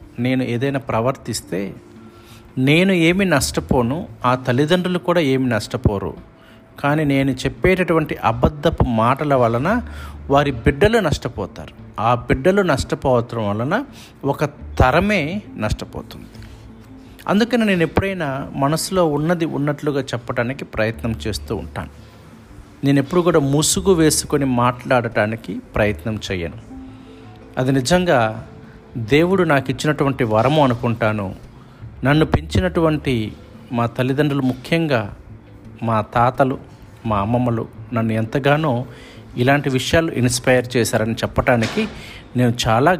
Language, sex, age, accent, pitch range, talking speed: Telugu, male, 50-69, native, 110-150 Hz, 100 wpm